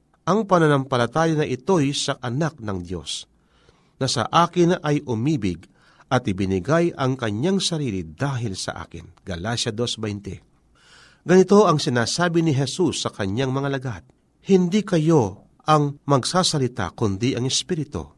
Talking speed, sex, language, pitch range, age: 130 wpm, male, Filipino, 110-165 Hz, 40-59